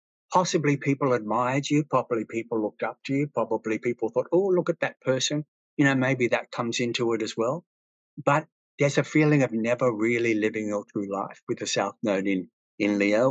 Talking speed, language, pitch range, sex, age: 205 wpm, English, 105-140 Hz, male, 60-79